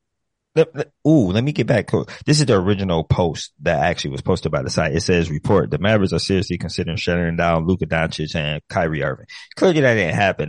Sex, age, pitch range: male, 20-39, 85-105 Hz